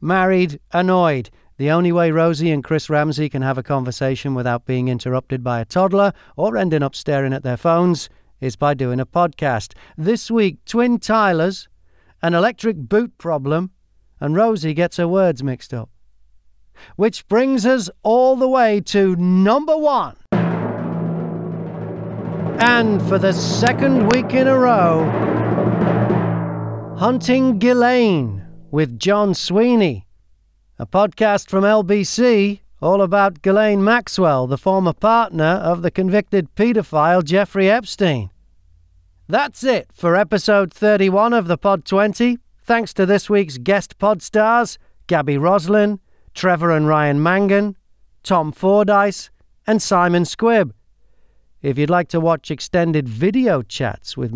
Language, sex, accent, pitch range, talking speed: English, male, British, 145-210 Hz, 135 wpm